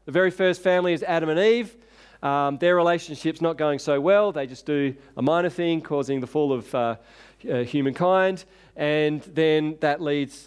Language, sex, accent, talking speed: English, male, Australian, 180 wpm